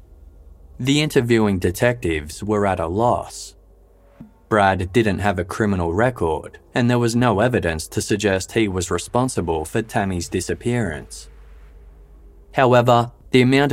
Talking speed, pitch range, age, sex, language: 125 wpm, 75-110 Hz, 20-39, male, English